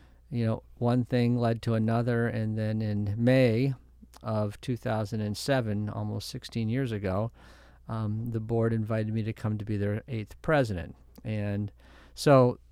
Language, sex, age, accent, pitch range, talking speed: English, male, 40-59, American, 110-125 Hz, 145 wpm